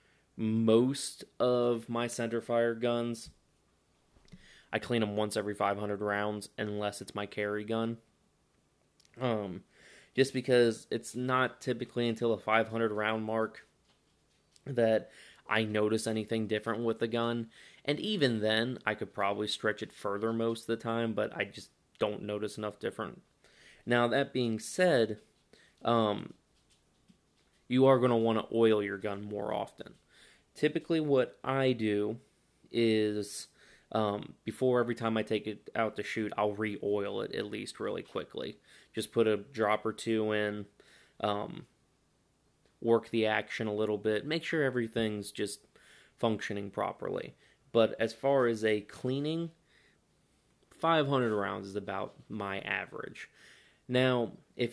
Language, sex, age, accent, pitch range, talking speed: English, male, 20-39, American, 105-120 Hz, 140 wpm